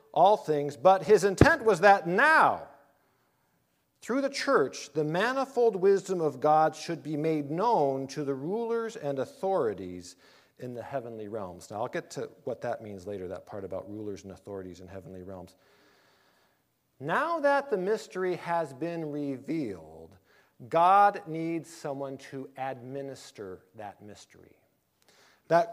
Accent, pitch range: American, 135-180 Hz